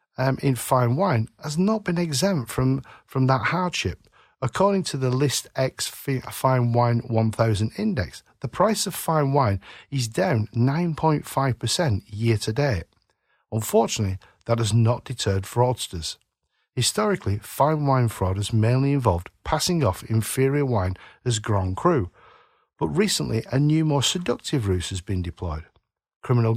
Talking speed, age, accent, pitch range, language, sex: 140 wpm, 50-69, British, 110-140 Hz, English, male